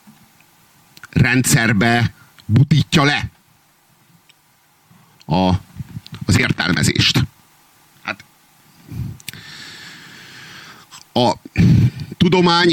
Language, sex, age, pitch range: Hungarian, male, 50-69, 105-140 Hz